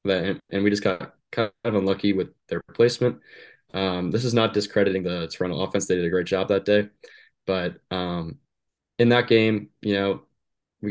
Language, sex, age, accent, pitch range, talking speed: English, male, 20-39, American, 95-110 Hz, 185 wpm